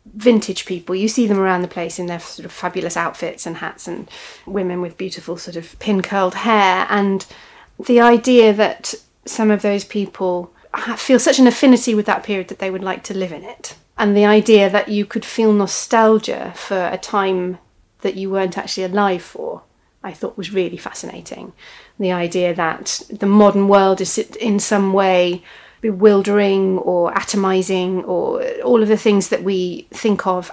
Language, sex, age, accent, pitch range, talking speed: English, female, 30-49, British, 185-215 Hz, 180 wpm